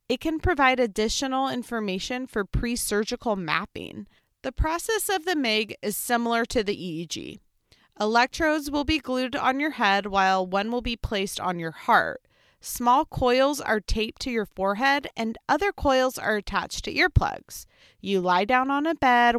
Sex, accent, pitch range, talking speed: female, American, 195-265 Hz, 165 wpm